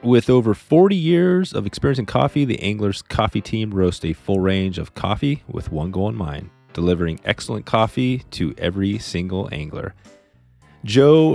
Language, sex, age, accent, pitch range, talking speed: English, male, 30-49, American, 85-115 Hz, 165 wpm